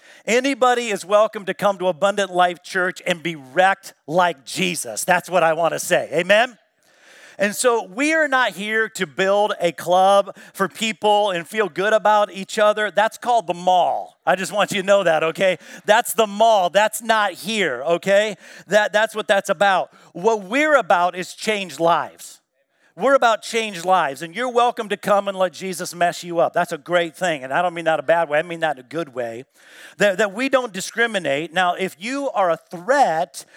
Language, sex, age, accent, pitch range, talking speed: English, male, 50-69, American, 170-215 Hz, 205 wpm